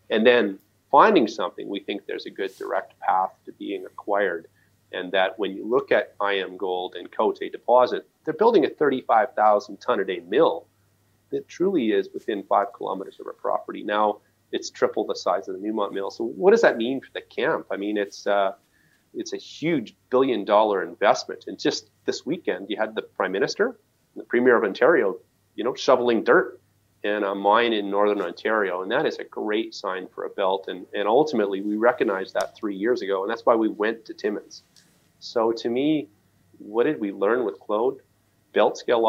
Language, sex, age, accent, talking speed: English, male, 30-49, American, 195 wpm